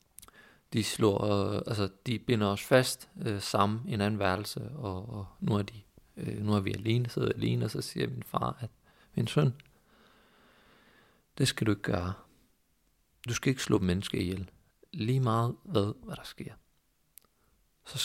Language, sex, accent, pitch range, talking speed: Danish, male, native, 100-120 Hz, 175 wpm